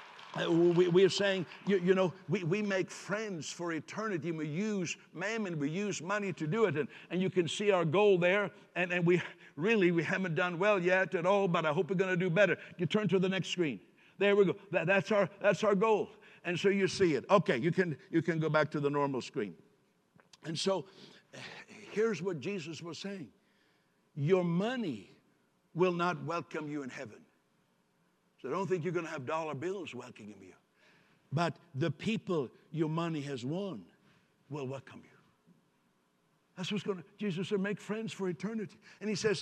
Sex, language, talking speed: male, English, 200 wpm